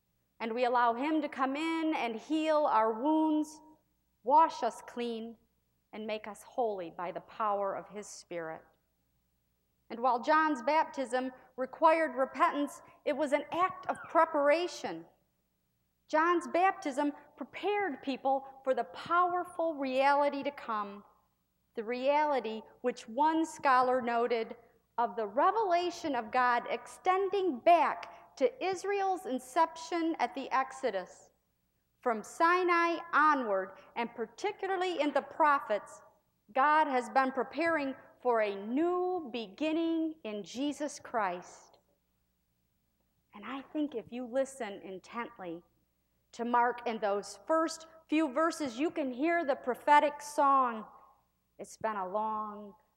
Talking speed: 120 wpm